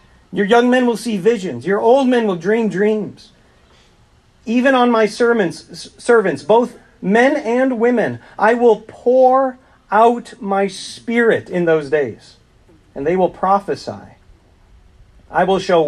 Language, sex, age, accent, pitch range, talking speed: English, male, 40-59, American, 155-230 Hz, 140 wpm